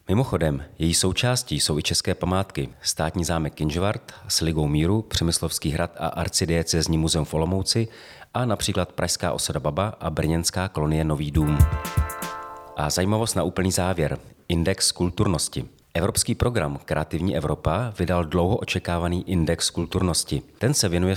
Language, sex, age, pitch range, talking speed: Czech, male, 40-59, 80-95 Hz, 135 wpm